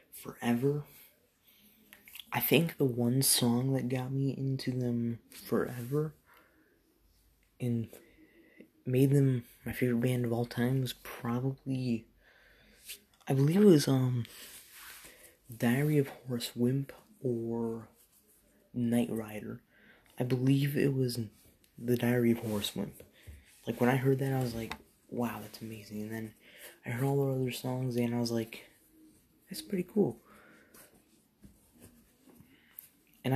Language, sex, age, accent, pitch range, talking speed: English, male, 20-39, American, 120-135 Hz, 130 wpm